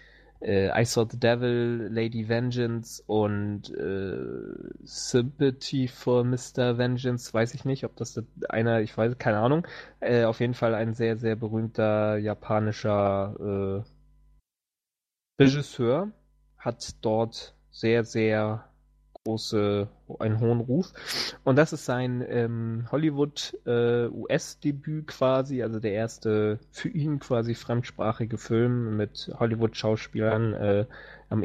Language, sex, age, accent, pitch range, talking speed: English, male, 20-39, German, 110-125 Hz, 115 wpm